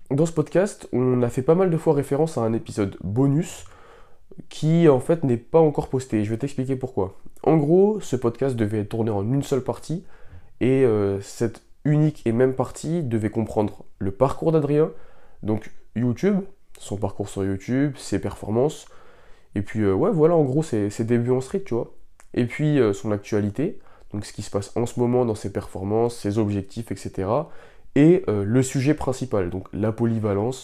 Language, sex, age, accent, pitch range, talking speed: French, male, 20-39, French, 105-140 Hz, 190 wpm